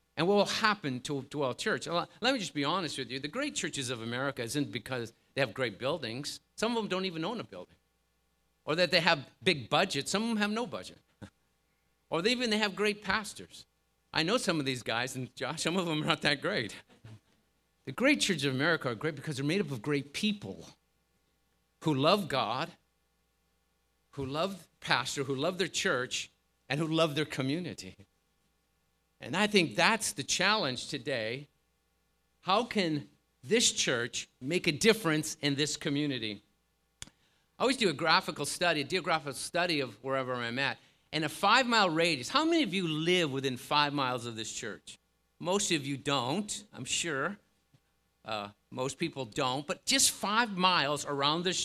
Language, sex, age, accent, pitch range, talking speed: English, male, 50-69, American, 135-195 Hz, 180 wpm